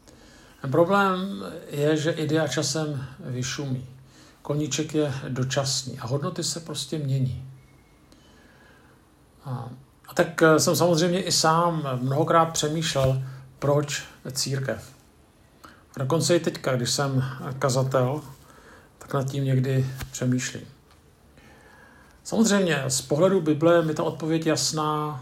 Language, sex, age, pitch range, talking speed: Czech, male, 50-69, 130-150 Hz, 105 wpm